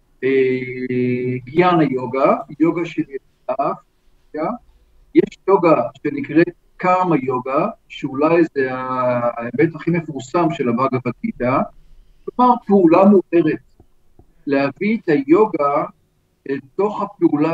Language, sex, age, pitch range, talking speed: Hebrew, male, 50-69, 130-180 Hz, 90 wpm